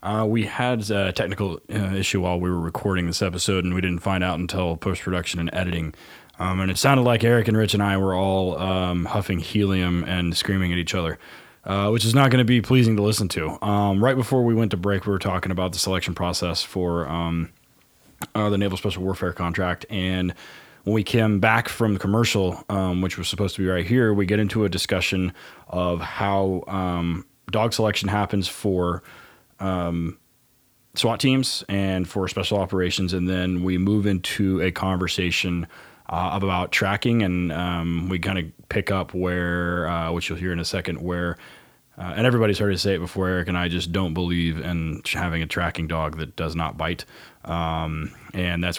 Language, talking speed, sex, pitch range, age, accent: English, 200 wpm, male, 90-100 Hz, 20-39, American